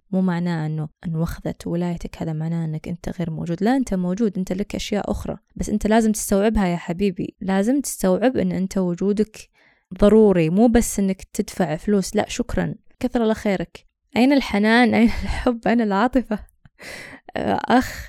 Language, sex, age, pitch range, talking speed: Arabic, female, 20-39, 190-245 Hz, 155 wpm